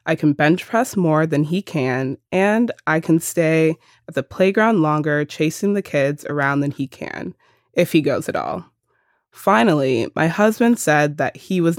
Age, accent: 20-39, American